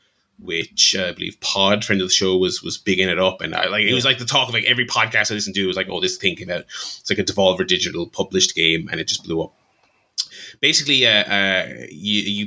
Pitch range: 100-135 Hz